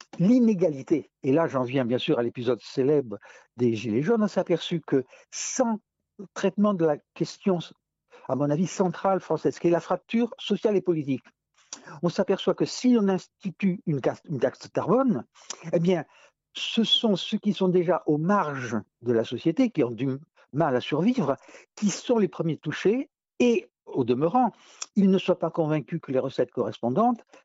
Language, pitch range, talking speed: French, 140-195 Hz, 170 wpm